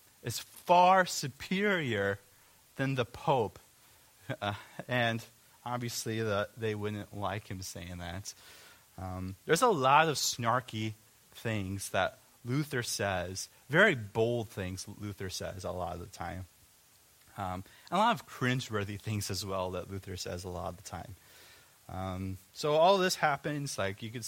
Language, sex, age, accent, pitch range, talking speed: English, male, 30-49, American, 95-125 Hz, 150 wpm